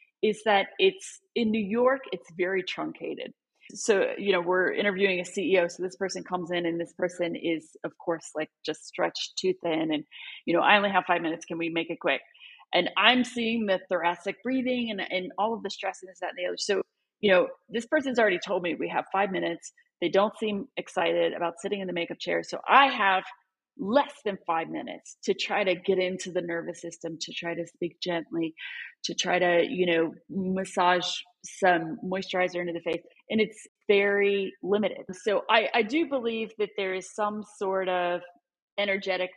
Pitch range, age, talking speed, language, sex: 175-210 Hz, 30-49, 200 wpm, English, female